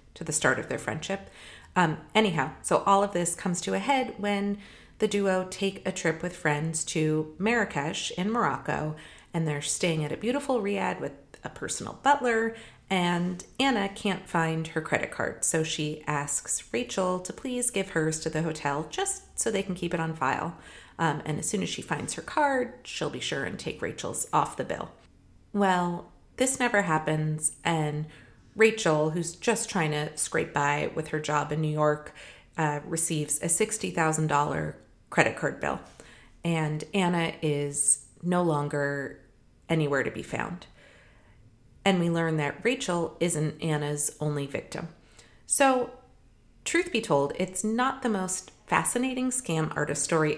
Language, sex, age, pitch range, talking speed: English, female, 30-49, 150-205 Hz, 165 wpm